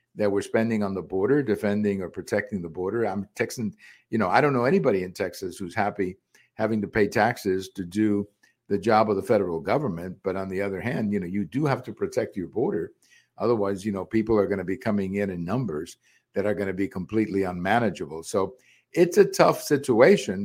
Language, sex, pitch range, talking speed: English, male, 95-110 Hz, 215 wpm